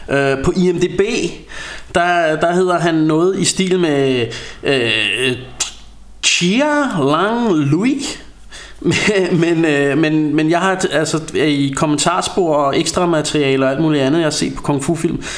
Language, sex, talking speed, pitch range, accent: Danish, male, 150 wpm, 135-160 Hz, native